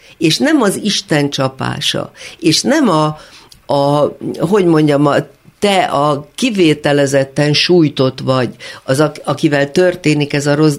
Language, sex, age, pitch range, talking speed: Hungarian, female, 50-69, 140-175 Hz, 115 wpm